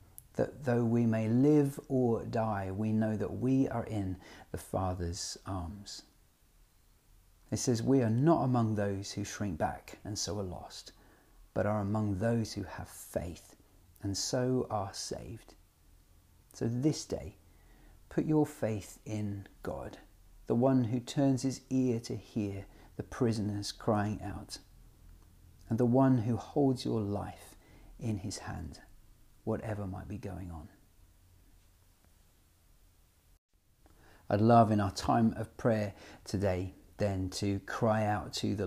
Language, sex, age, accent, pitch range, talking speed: English, male, 40-59, British, 95-120 Hz, 140 wpm